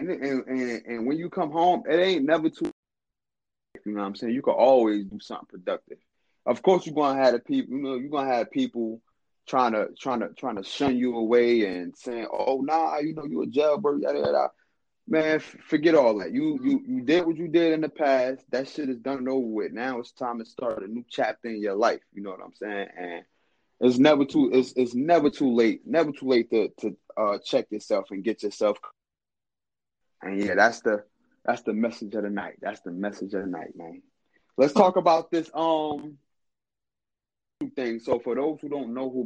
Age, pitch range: 20-39, 115-160 Hz